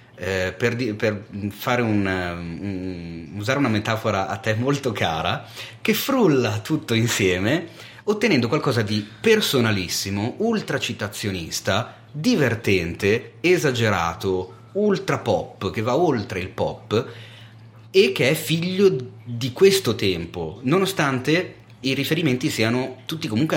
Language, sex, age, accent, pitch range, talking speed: Italian, male, 30-49, native, 100-125 Hz, 115 wpm